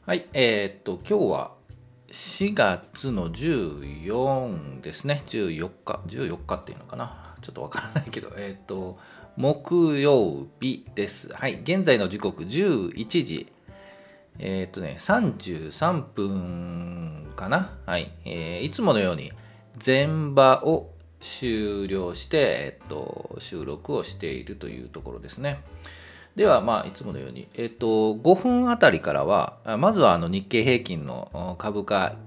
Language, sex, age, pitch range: Japanese, male, 40-59, 85-130 Hz